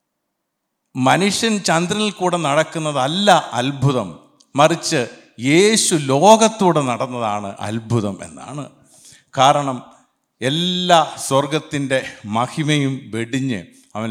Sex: male